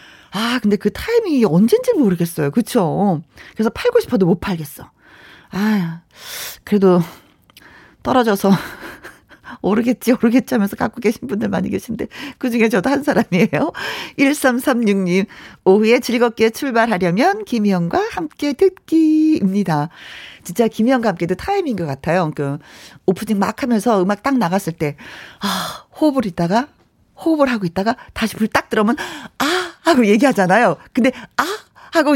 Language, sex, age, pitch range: Korean, female, 40-59, 195-285 Hz